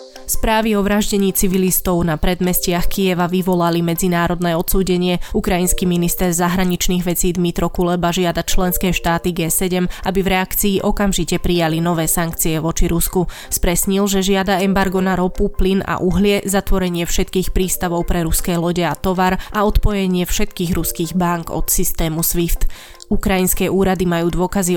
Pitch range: 170-190 Hz